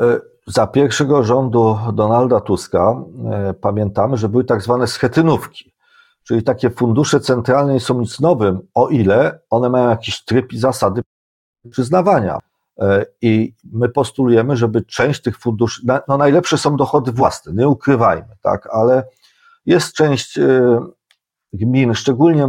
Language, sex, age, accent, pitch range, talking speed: Polish, male, 40-59, native, 115-145 Hz, 140 wpm